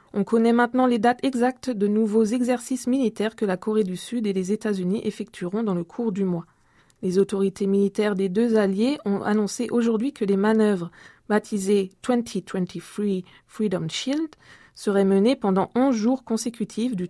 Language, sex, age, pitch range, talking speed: French, female, 20-39, 190-235 Hz, 165 wpm